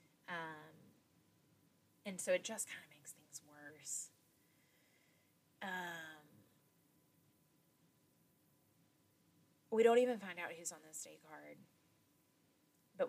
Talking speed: 100 wpm